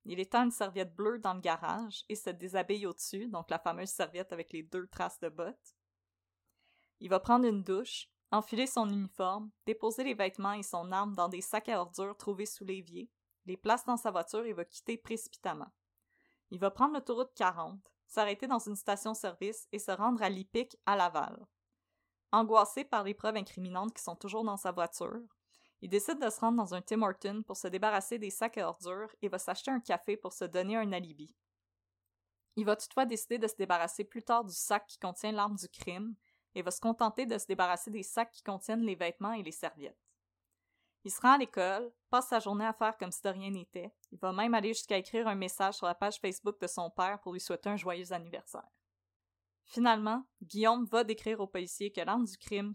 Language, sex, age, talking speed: French, female, 20-39, 210 wpm